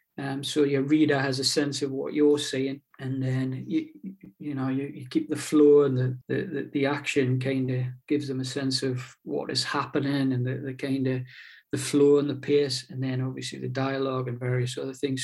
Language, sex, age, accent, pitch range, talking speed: English, male, 40-59, British, 135-155 Hz, 215 wpm